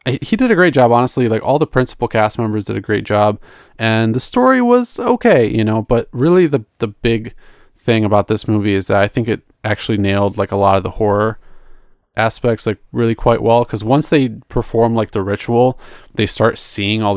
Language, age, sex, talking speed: English, 20-39, male, 215 wpm